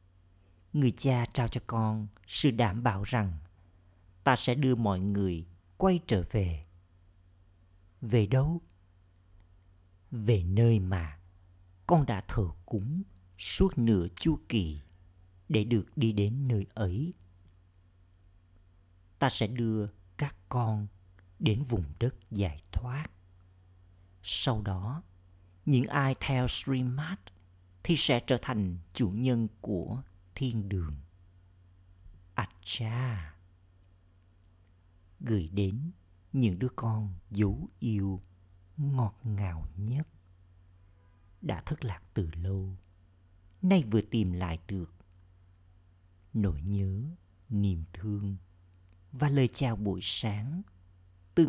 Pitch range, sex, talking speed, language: 90-115 Hz, male, 110 wpm, Vietnamese